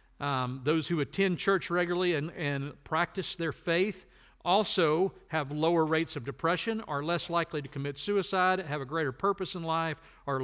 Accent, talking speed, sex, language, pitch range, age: American, 170 wpm, male, English, 130-185 Hz, 50-69